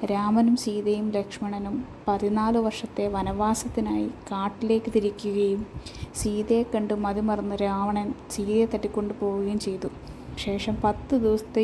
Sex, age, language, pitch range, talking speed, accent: female, 20-39, Malayalam, 205-225 Hz, 95 wpm, native